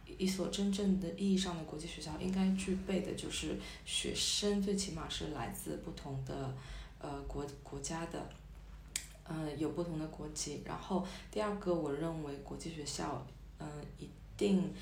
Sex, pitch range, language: female, 140-175 Hz, Chinese